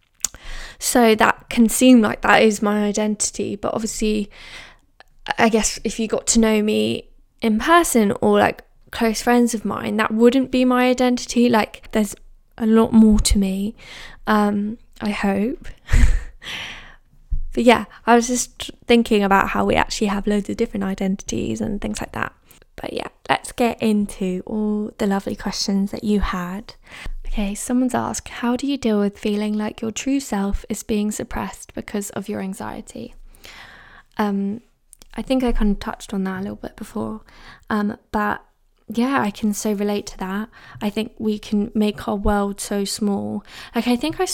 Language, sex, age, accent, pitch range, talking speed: English, female, 10-29, British, 205-235 Hz, 175 wpm